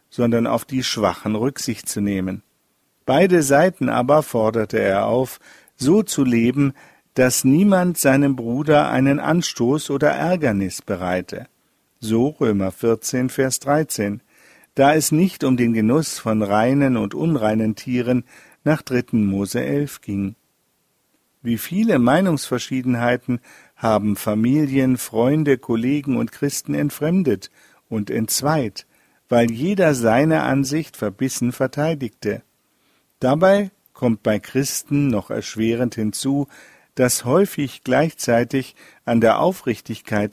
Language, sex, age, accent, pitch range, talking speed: German, male, 50-69, German, 115-145 Hz, 115 wpm